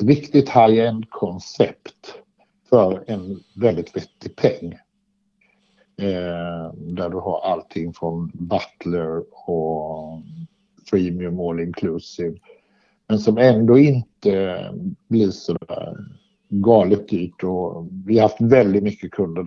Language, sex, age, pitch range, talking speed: Swedish, male, 60-79, 90-125 Hz, 110 wpm